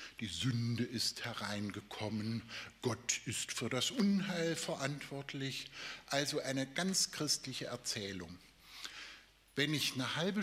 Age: 60-79